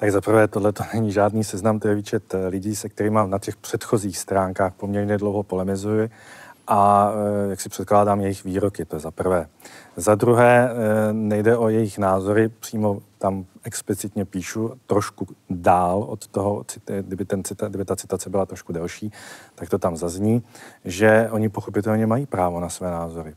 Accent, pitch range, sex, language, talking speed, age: native, 100-115 Hz, male, Czech, 160 wpm, 40-59